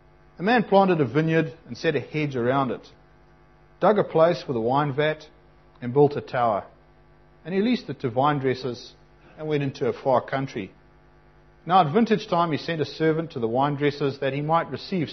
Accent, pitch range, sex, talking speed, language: Australian, 125-165 Hz, male, 195 wpm, English